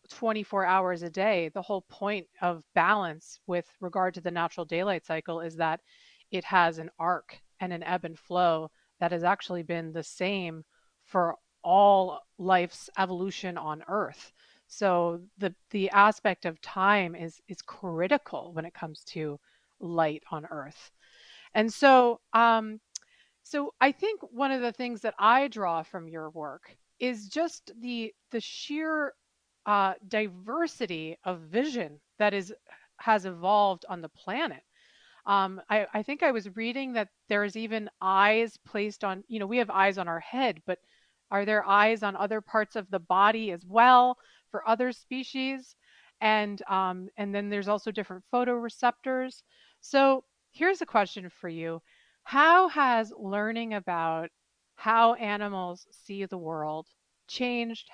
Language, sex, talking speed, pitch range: English, female, 155 wpm, 175-230 Hz